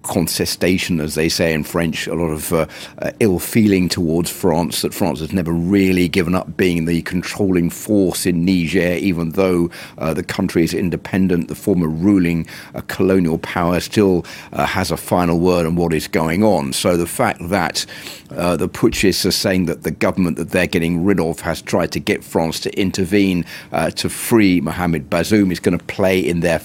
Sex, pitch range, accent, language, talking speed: male, 85-95 Hz, British, English, 200 wpm